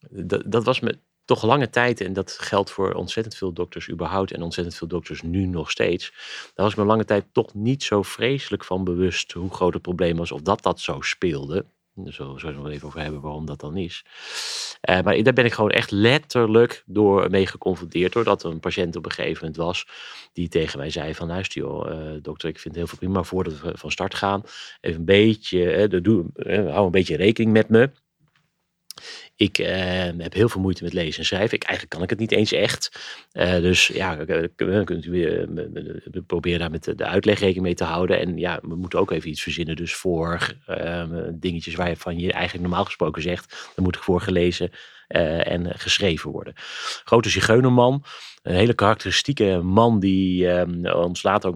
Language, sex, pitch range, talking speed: Dutch, male, 85-100 Hz, 205 wpm